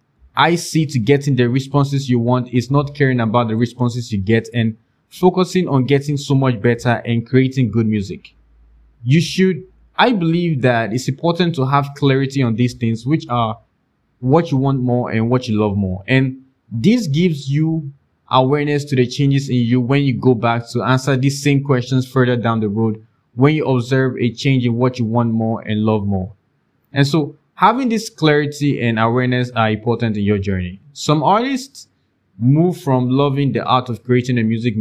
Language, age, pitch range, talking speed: English, 20-39, 115-140 Hz, 190 wpm